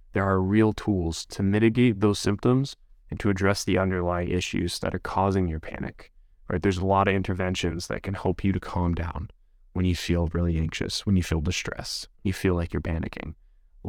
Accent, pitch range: American, 85-105 Hz